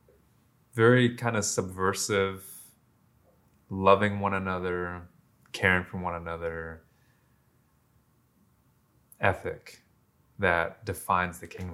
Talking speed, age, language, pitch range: 80 wpm, 20-39, English, 90-105 Hz